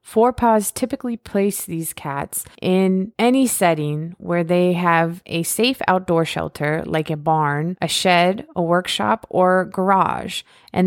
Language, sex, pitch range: English, female, 165-195 Hz